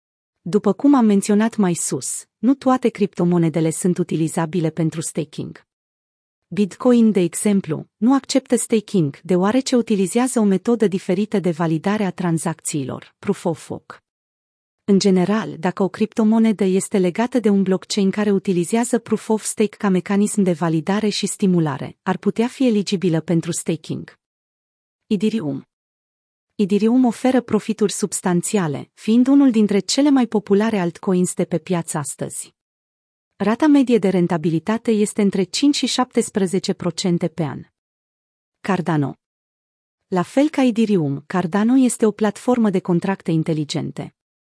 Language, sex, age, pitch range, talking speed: Romanian, female, 30-49, 175-220 Hz, 125 wpm